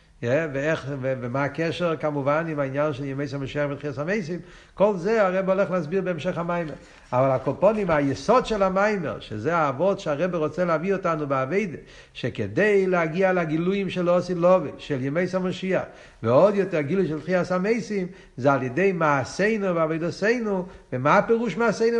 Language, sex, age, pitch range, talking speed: Hebrew, male, 60-79, 140-185 Hz, 145 wpm